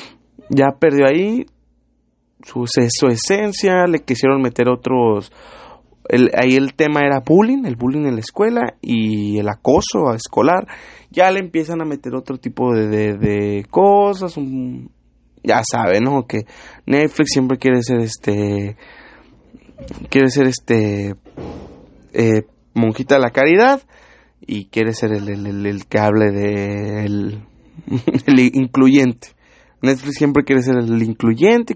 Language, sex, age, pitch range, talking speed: English, male, 30-49, 110-150 Hz, 145 wpm